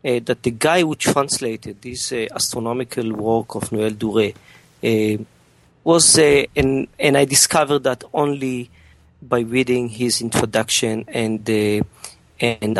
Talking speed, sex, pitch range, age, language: 135 wpm, male, 110-140 Hz, 40-59, English